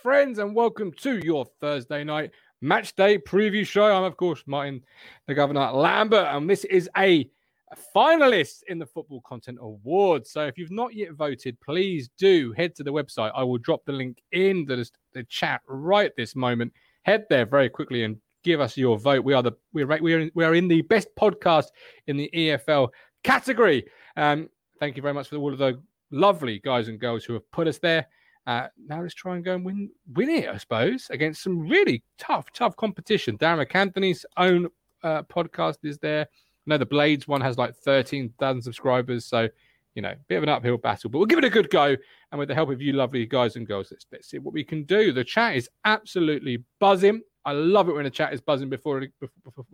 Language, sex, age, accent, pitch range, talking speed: English, male, 30-49, British, 135-180 Hz, 210 wpm